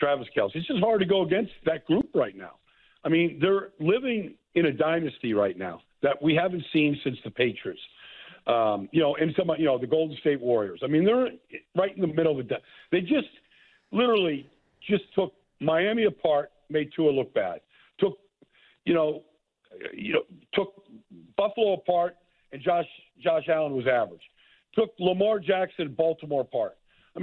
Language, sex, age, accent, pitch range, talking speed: English, male, 50-69, American, 155-200 Hz, 180 wpm